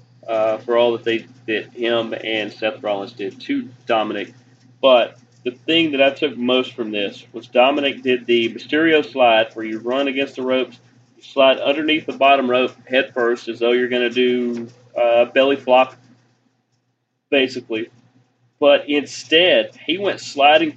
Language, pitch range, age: English, 120-140 Hz, 30-49